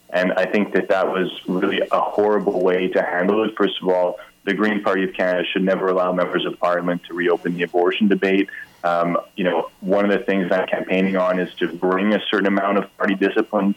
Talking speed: 220 wpm